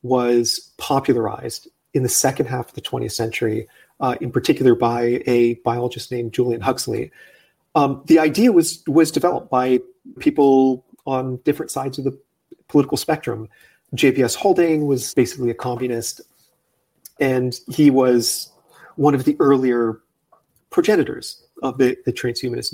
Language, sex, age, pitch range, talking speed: English, male, 30-49, 120-150 Hz, 135 wpm